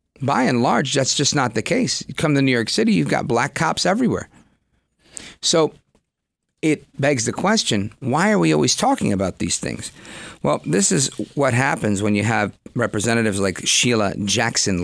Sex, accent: male, American